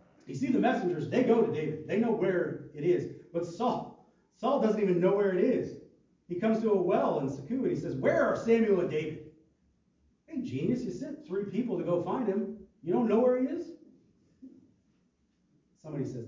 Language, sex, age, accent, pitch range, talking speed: English, male, 40-59, American, 125-185 Hz, 205 wpm